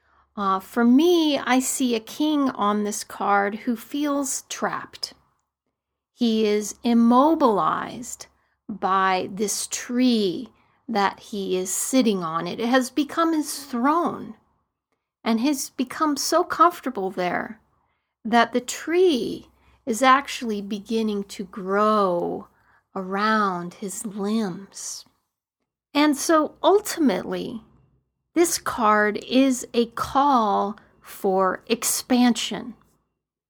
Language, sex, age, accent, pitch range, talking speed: English, female, 40-59, American, 200-265 Hz, 100 wpm